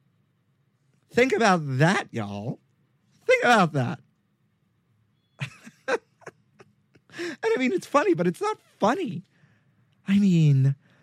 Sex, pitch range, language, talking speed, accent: male, 135-175 Hz, English, 100 wpm, American